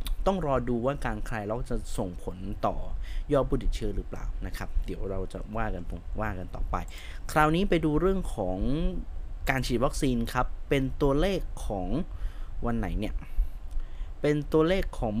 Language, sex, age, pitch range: Thai, male, 20-39, 90-125 Hz